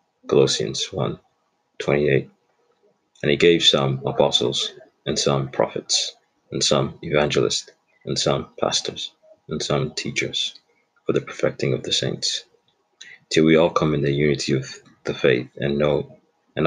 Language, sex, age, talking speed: English, male, 30-49, 140 wpm